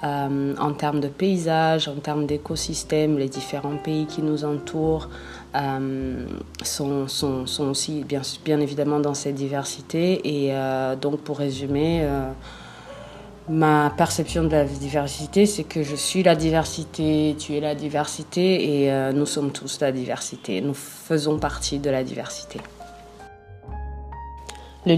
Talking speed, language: 145 wpm, English